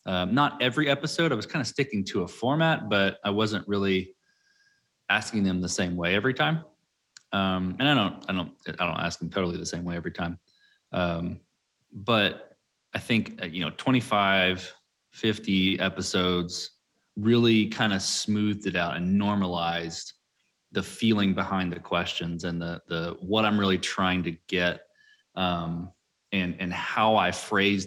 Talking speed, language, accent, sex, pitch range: 165 wpm, English, American, male, 90-105 Hz